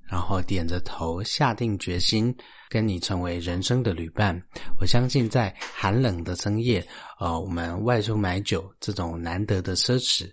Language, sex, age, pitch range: Chinese, male, 30-49, 90-115 Hz